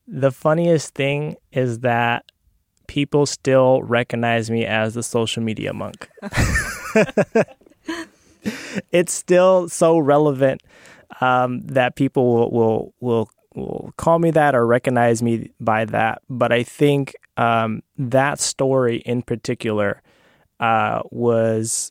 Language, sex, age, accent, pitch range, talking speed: English, male, 20-39, American, 115-140 Hz, 120 wpm